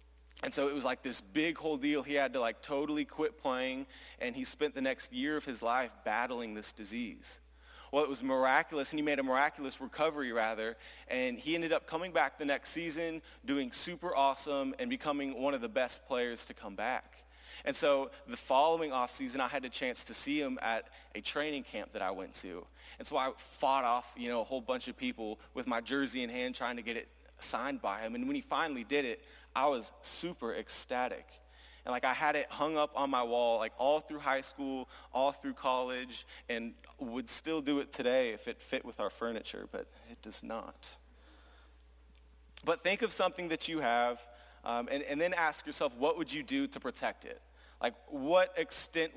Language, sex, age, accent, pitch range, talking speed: English, male, 30-49, American, 120-160 Hz, 210 wpm